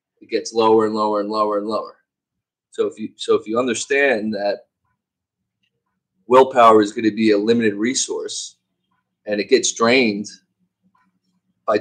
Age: 30-49